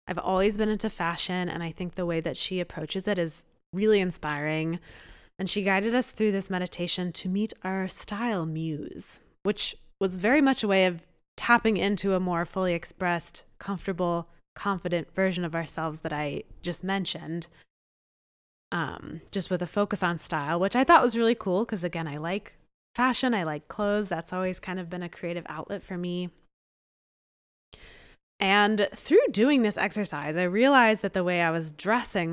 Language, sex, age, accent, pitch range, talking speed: English, female, 20-39, American, 170-210 Hz, 175 wpm